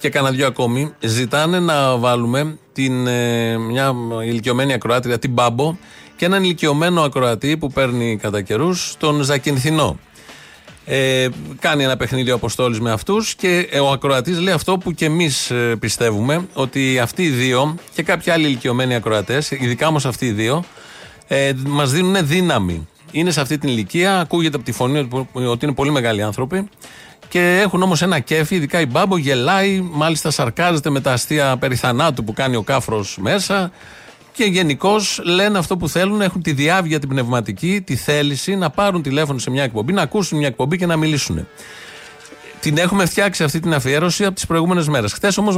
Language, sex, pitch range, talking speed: Greek, male, 130-175 Hz, 170 wpm